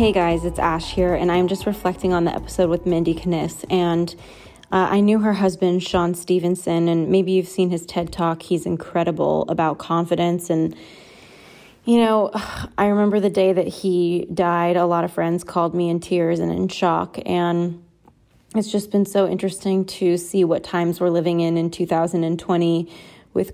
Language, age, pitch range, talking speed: English, 20-39, 170-190 Hz, 180 wpm